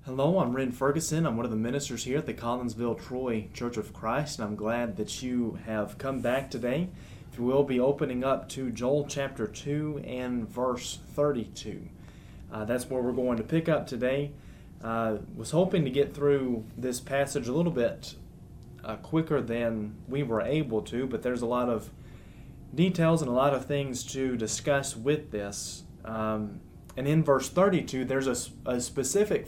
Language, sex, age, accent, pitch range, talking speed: English, male, 30-49, American, 115-140 Hz, 180 wpm